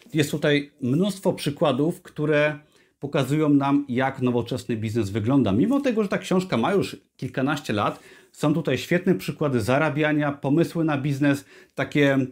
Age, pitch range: 30-49, 125-155 Hz